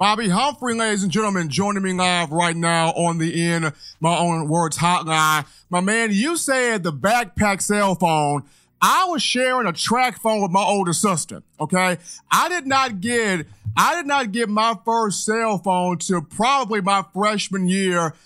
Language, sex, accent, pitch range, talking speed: English, male, American, 170-215 Hz, 175 wpm